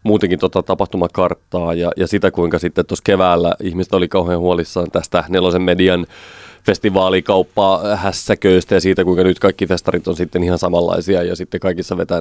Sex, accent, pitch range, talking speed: male, native, 90-105 Hz, 160 wpm